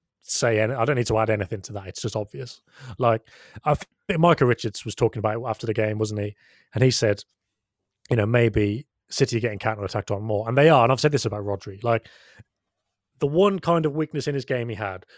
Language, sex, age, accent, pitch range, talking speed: English, male, 30-49, British, 110-135 Hz, 225 wpm